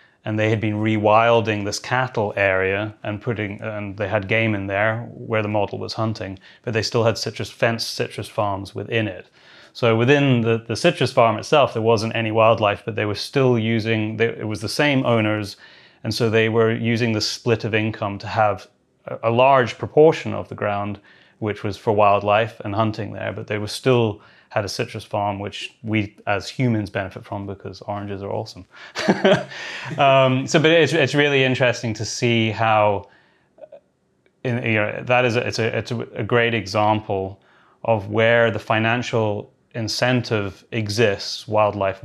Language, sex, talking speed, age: English, male, 175 wpm, 30-49